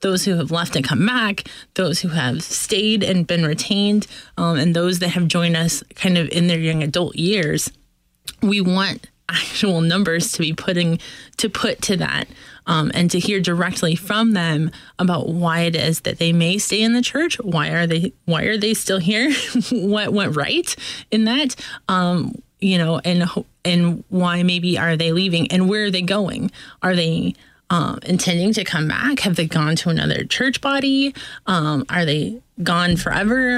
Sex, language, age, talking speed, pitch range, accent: female, English, 20-39, 185 wpm, 170-210 Hz, American